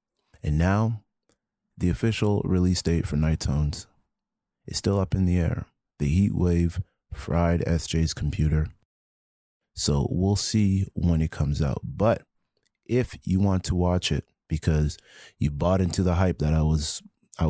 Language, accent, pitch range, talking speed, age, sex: English, American, 80-95 Hz, 155 wpm, 30-49, male